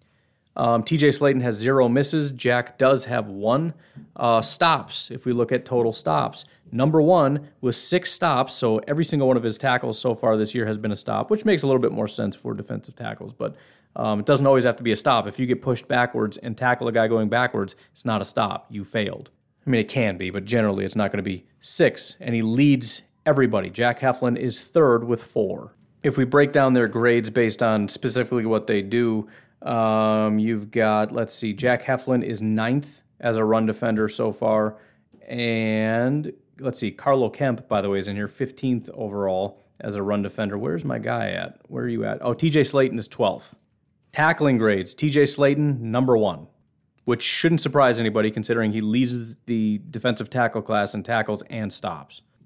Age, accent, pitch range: 30-49, American, 110-130 Hz